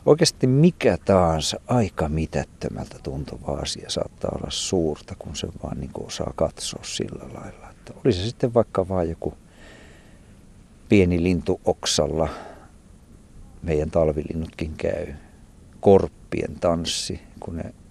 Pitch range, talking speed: 80-95 Hz, 110 wpm